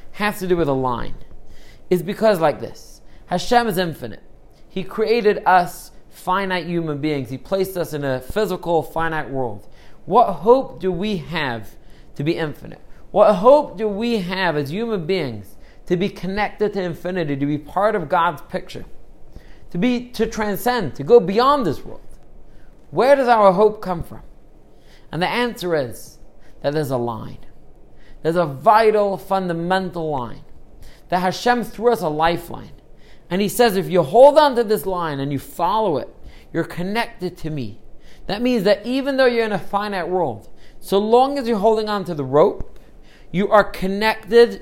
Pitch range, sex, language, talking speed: 155-215 Hz, male, English, 170 wpm